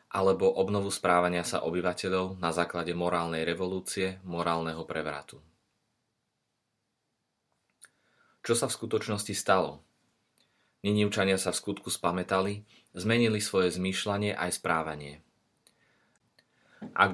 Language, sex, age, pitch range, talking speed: Slovak, male, 30-49, 90-100 Hz, 95 wpm